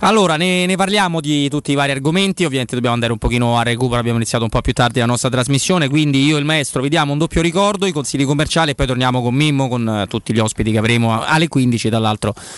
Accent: native